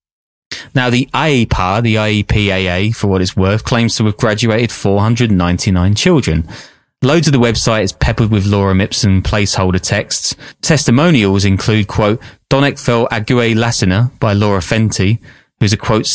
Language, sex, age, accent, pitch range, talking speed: English, male, 20-39, British, 100-125 Hz, 140 wpm